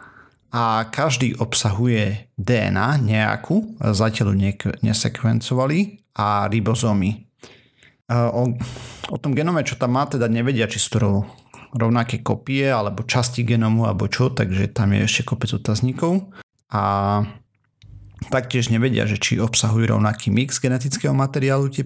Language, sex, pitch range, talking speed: Slovak, male, 110-130 Hz, 130 wpm